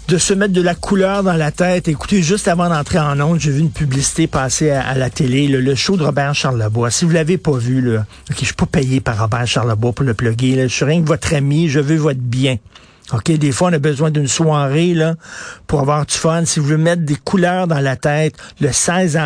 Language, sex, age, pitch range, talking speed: French, male, 50-69, 130-160 Hz, 255 wpm